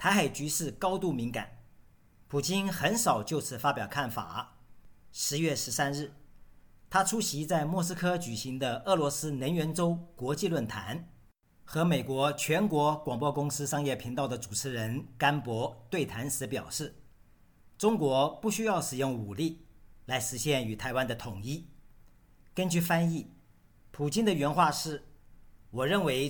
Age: 50-69